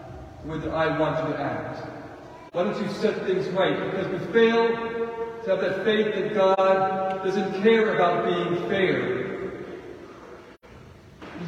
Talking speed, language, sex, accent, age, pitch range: 140 wpm, English, male, American, 40-59, 155-205 Hz